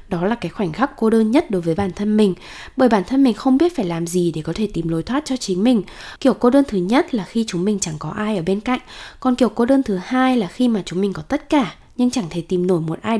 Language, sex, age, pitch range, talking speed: Vietnamese, female, 10-29, 185-255 Hz, 305 wpm